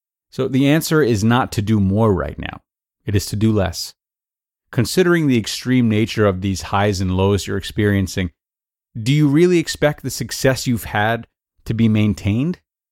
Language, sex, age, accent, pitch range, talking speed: English, male, 30-49, American, 100-135 Hz, 170 wpm